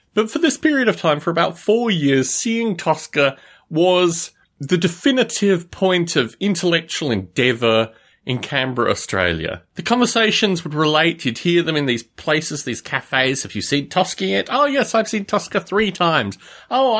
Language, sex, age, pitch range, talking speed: English, male, 30-49, 145-215 Hz, 165 wpm